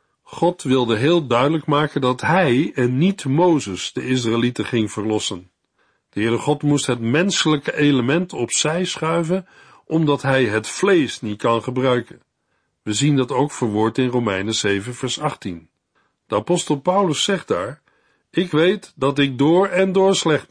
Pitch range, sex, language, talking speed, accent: 125-180 Hz, male, Dutch, 155 wpm, Dutch